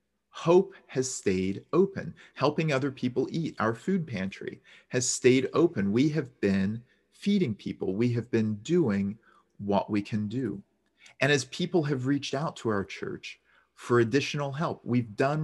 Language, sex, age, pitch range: English, male, 40-59, 100-145 Hz